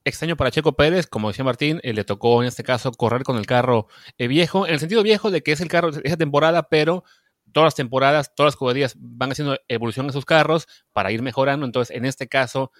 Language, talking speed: Spanish, 245 wpm